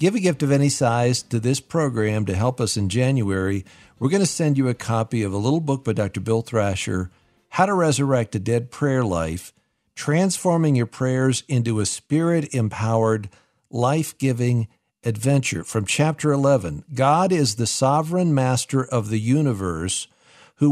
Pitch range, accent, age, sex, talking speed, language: 110-145 Hz, American, 50-69, male, 160 wpm, English